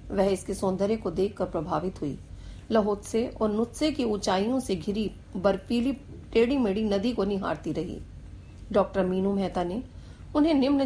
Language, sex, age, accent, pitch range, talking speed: Hindi, female, 40-59, native, 180-240 Hz, 155 wpm